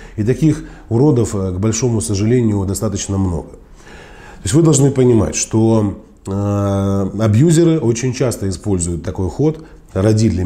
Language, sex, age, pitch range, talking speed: Russian, male, 20-39, 100-120 Hz, 115 wpm